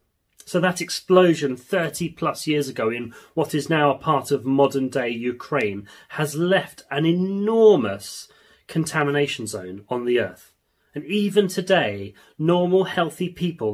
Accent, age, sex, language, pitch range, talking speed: British, 30-49, male, English, 120-165 Hz, 140 wpm